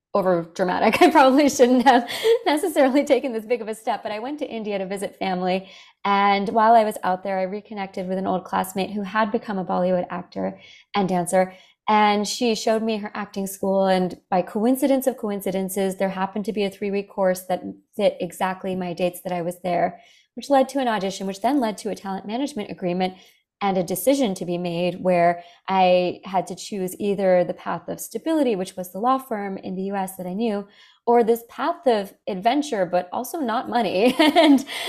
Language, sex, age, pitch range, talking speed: English, female, 30-49, 185-240 Hz, 205 wpm